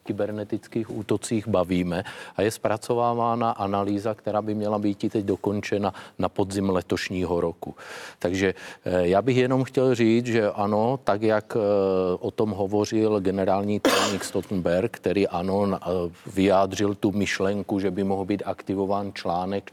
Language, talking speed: Czech, 135 wpm